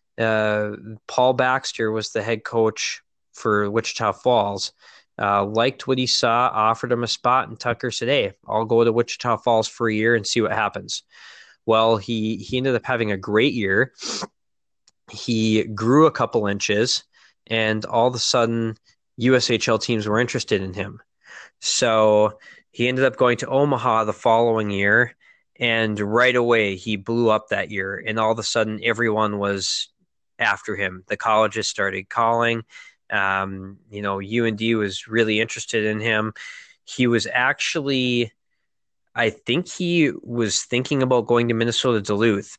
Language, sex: English, male